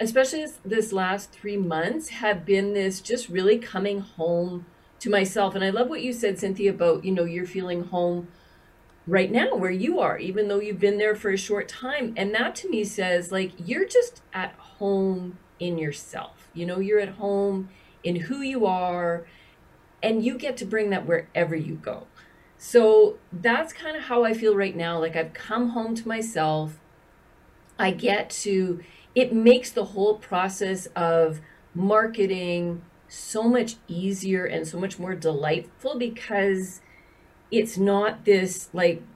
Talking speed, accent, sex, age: 170 wpm, American, female, 40-59